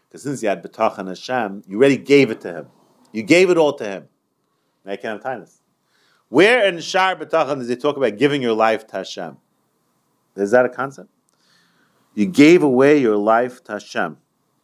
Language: English